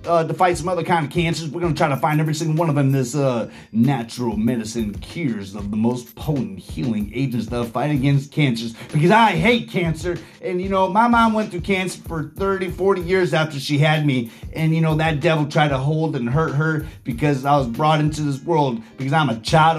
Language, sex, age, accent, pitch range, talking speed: English, male, 30-49, American, 150-200 Hz, 230 wpm